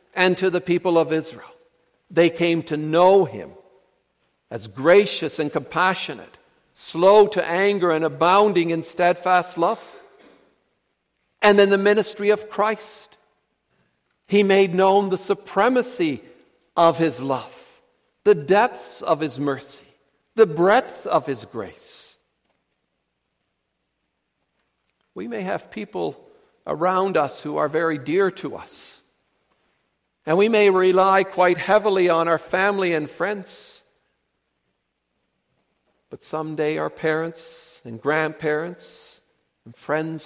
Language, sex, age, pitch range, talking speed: English, male, 60-79, 140-195 Hz, 115 wpm